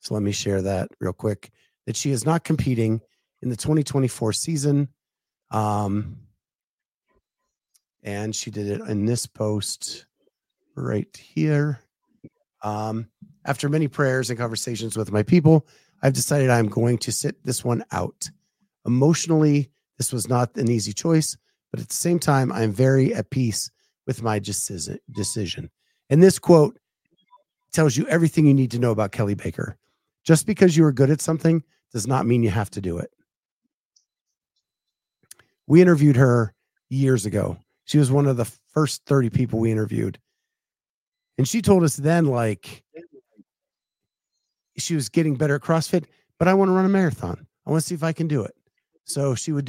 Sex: male